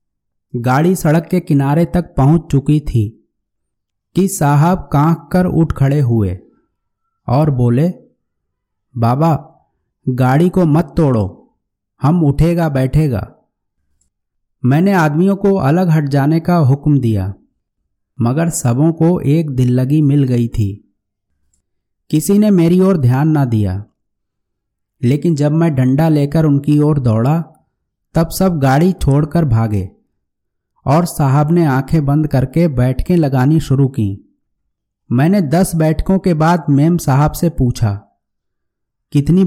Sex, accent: male, native